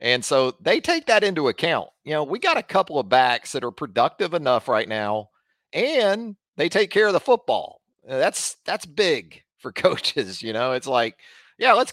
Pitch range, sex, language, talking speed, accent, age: 110-145 Hz, male, English, 195 wpm, American, 40-59